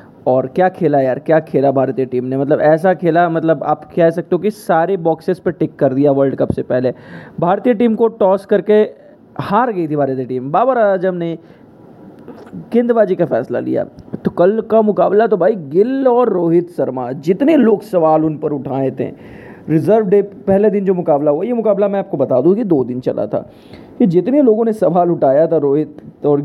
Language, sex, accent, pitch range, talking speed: English, male, Indian, 150-205 Hz, 195 wpm